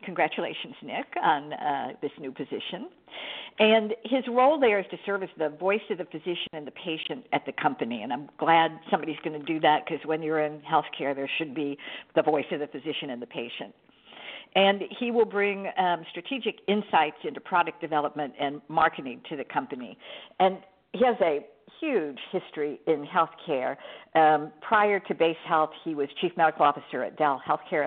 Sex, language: female, English